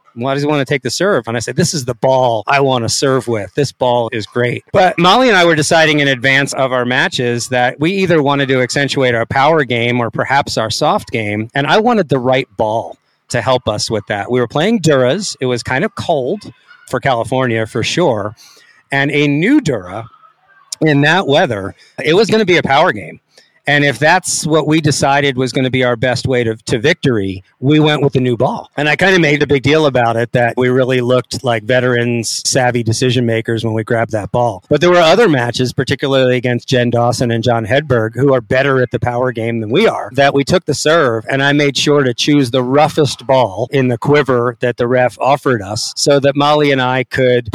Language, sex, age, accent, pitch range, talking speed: English, male, 40-59, American, 120-145 Hz, 230 wpm